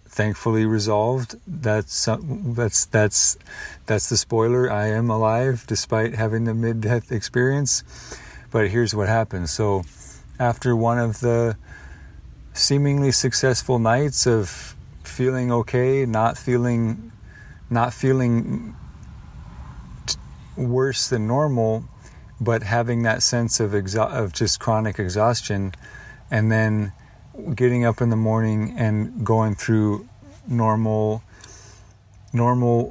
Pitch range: 105-120 Hz